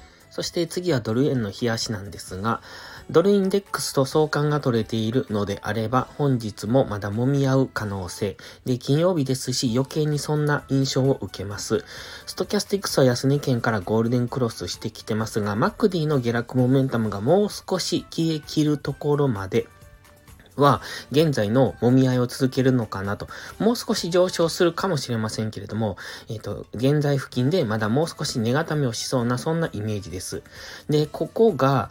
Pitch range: 110-150 Hz